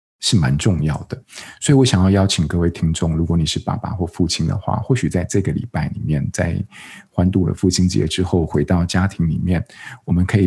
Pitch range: 80-100 Hz